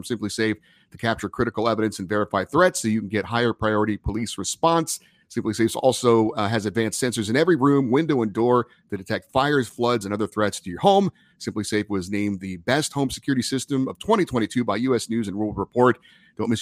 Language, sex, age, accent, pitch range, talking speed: English, male, 30-49, American, 105-140 Hz, 215 wpm